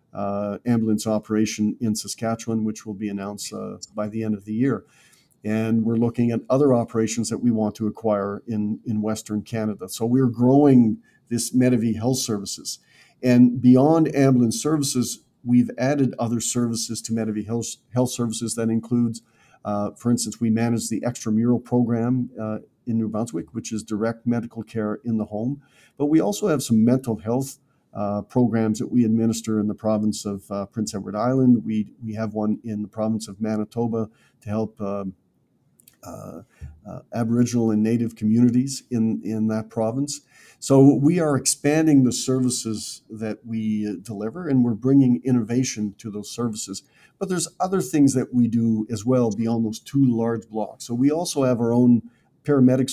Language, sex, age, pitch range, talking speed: English, male, 50-69, 110-125 Hz, 170 wpm